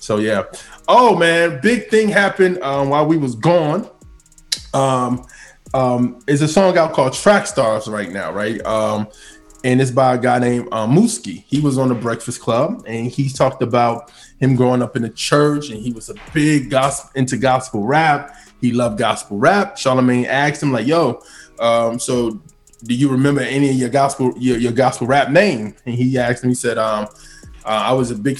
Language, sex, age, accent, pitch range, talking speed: English, male, 20-39, American, 120-140 Hz, 195 wpm